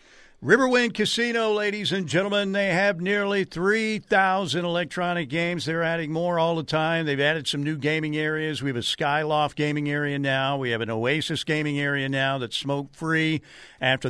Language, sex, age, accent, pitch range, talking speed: English, male, 50-69, American, 140-165 Hz, 170 wpm